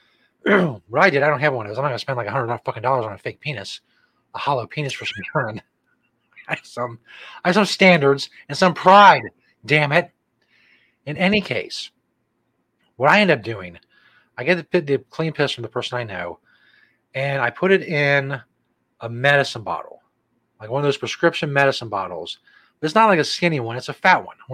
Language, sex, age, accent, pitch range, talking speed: English, male, 30-49, American, 120-155 Hz, 210 wpm